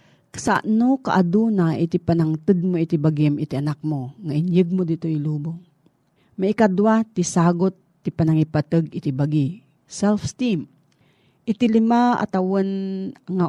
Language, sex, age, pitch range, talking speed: Filipino, female, 40-59, 155-205 Hz, 140 wpm